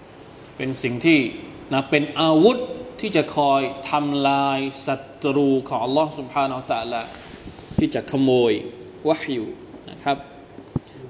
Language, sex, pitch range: Thai, male, 135-190 Hz